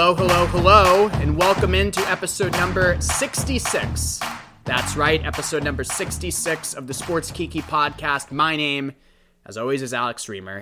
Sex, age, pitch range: male, 20-39, 125-180 Hz